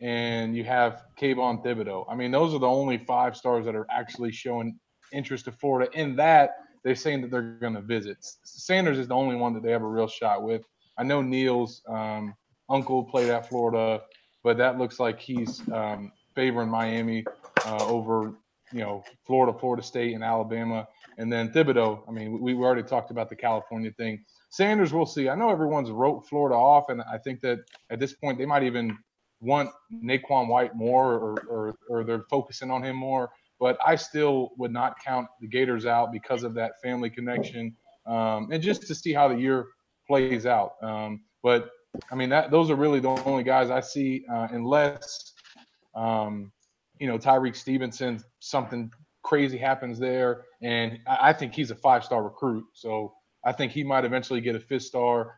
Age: 30-49